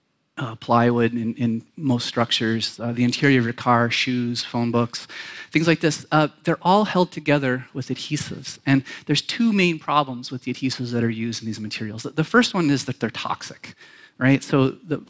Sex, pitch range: male, 130-165 Hz